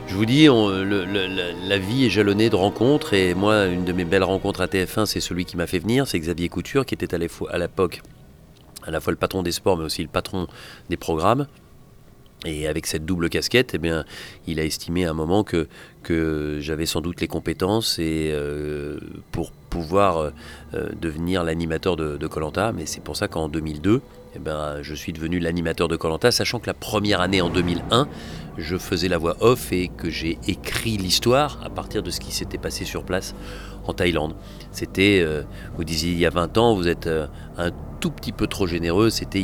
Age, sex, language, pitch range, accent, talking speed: 40-59, male, French, 80-95 Hz, French, 205 wpm